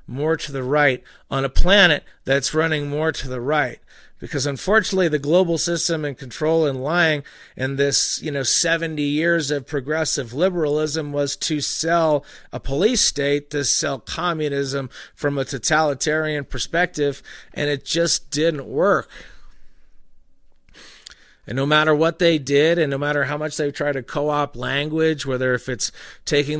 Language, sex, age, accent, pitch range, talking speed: English, male, 40-59, American, 130-155 Hz, 160 wpm